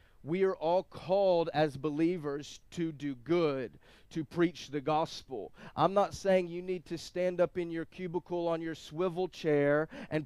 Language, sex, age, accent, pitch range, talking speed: English, male, 30-49, American, 155-195 Hz, 170 wpm